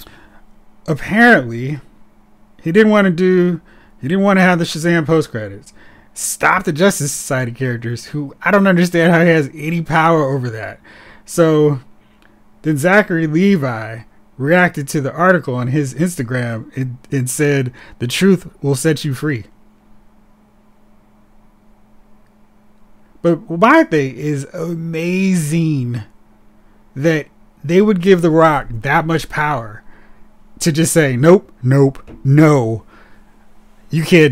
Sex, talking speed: male, 130 wpm